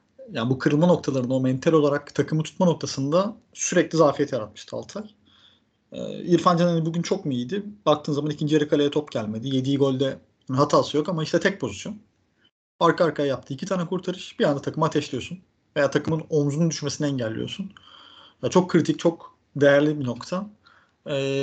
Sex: male